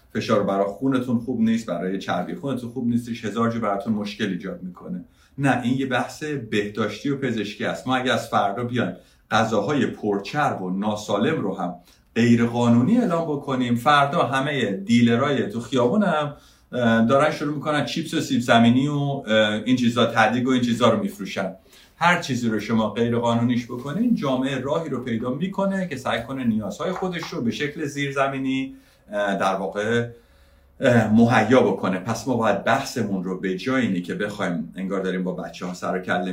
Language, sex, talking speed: Persian, male, 165 wpm